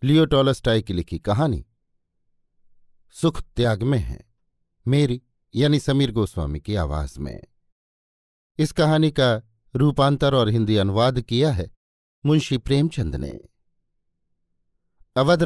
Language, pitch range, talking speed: Hindi, 95-145 Hz, 110 wpm